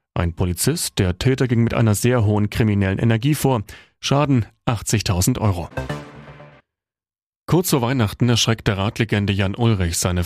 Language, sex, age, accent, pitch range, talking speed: German, male, 30-49, German, 95-130 Hz, 135 wpm